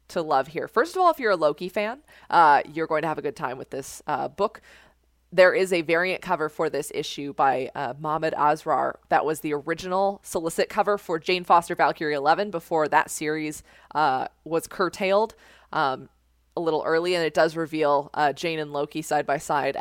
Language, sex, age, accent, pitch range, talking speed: English, female, 20-39, American, 150-185 Hz, 200 wpm